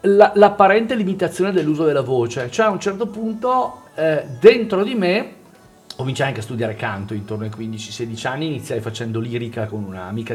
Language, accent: Italian, native